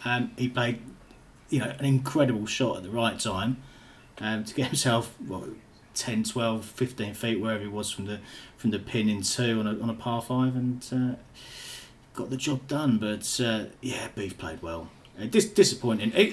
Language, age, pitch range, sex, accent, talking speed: English, 30-49, 105-125 Hz, male, British, 190 wpm